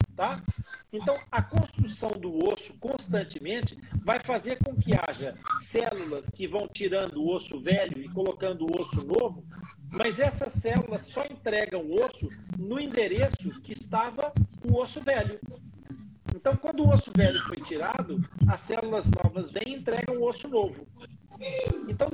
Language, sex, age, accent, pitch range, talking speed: Portuguese, male, 50-69, Brazilian, 175-245 Hz, 145 wpm